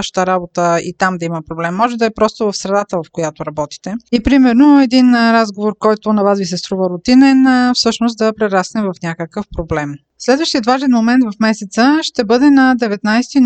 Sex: female